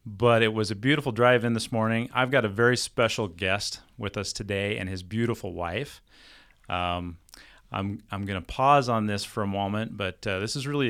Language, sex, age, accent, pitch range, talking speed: English, male, 30-49, American, 100-125 Hz, 205 wpm